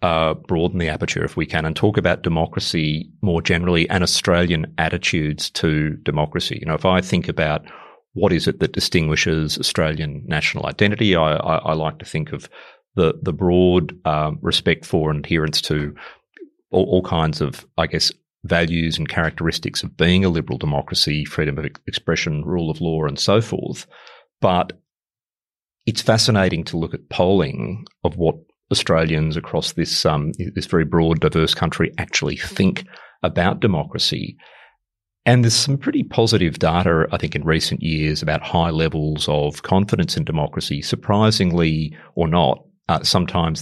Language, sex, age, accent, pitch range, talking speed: English, male, 30-49, Australian, 80-95 Hz, 160 wpm